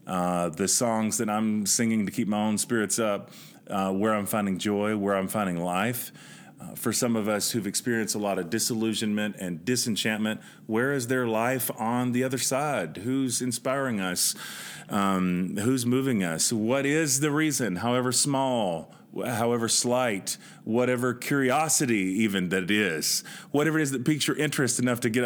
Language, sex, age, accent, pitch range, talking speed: English, male, 30-49, American, 105-135 Hz, 175 wpm